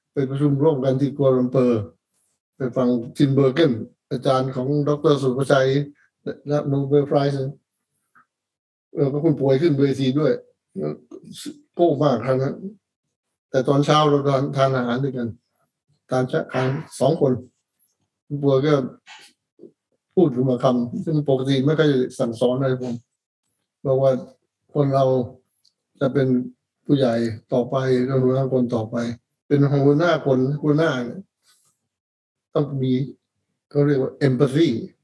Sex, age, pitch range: male, 60-79, 130-145 Hz